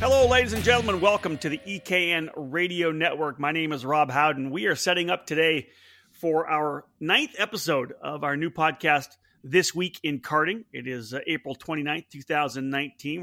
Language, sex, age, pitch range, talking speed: English, male, 40-59, 140-170 Hz, 170 wpm